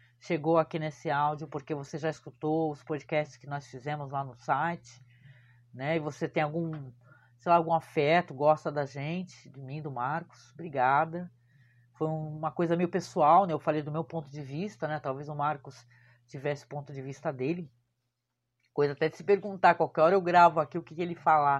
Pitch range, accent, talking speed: 135-170 Hz, Brazilian, 195 wpm